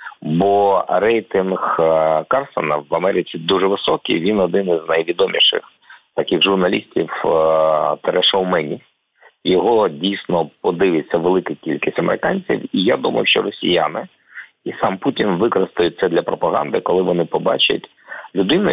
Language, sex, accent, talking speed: Ukrainian, male, native, 120 wpm